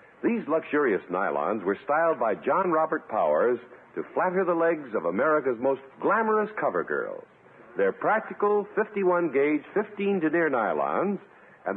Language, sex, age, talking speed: English, male, 60-79, 140 wpm